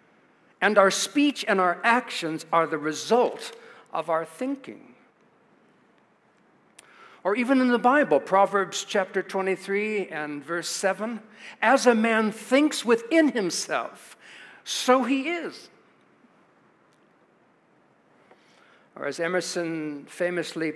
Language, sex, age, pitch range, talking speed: English, male, 60-79, 175-225 Hz, 105 wpm